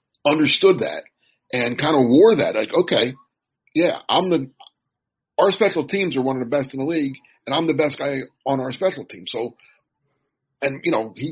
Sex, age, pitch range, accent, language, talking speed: male, 40-59, 130-165 Hz, American, English, 195 wpm